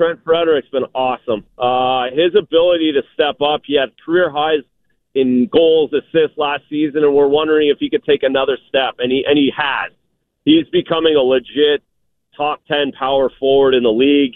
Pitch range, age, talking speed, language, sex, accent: 135-180 Hz, 40-59, 185 wpm, English, male, American